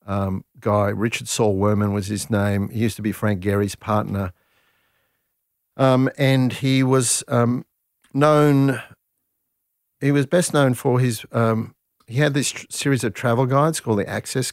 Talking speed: 155 wpm